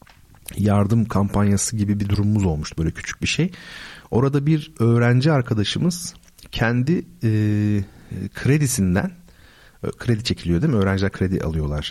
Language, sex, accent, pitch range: Turkish, male, native, 95-125 Hz